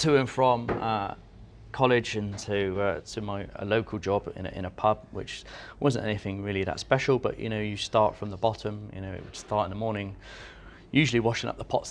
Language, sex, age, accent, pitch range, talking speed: English, male, 30-49, British, 90-110 Hz, 220 wpm